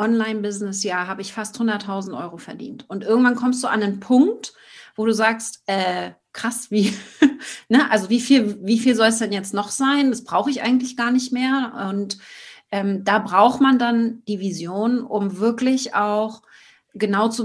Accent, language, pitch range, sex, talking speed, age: German, German, 200-240 Hz, female, 180 wpm, 30-49